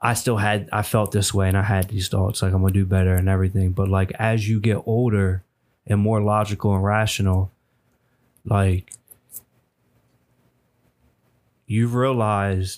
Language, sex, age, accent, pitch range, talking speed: English, male, 20-39, American, 100-125 Hz, 160 wpm